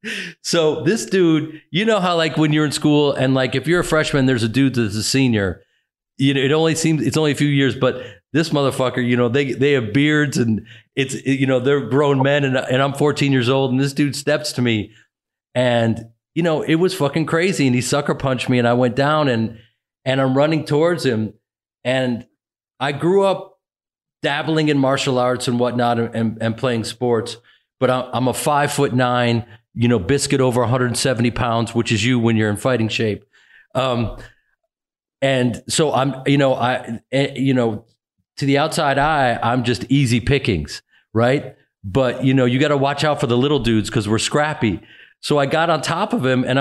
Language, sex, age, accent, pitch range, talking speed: English, male, 40-59, American, 120-150 Hz, 205 wpm